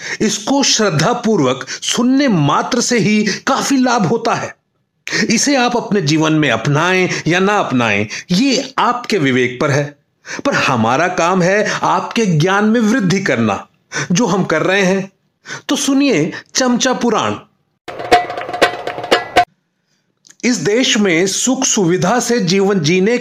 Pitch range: 170-240 Hz